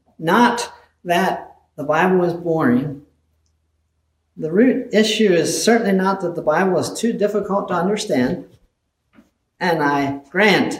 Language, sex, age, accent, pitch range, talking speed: English, male, 50-69, American, 155-210 Hz, 130 wpm